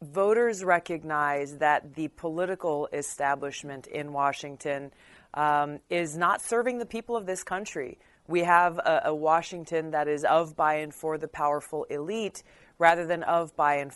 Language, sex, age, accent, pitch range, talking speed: English, female, 30-49, American, 150-185 Hz, 155 wpm